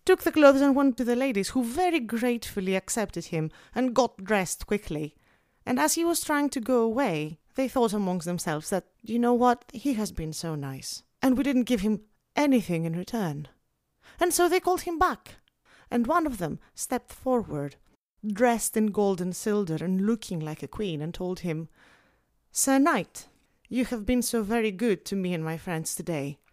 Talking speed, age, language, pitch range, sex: 190 wpm, 30-49, English, 185-265 Hz, female